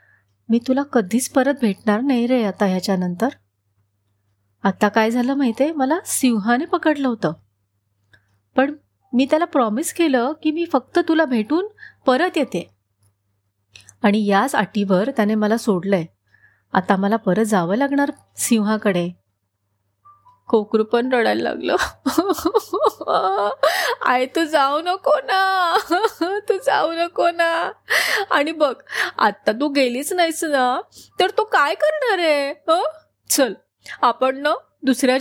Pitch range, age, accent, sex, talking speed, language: 190-305 Hz, 30-49, native, female, 125 wpm, Marathi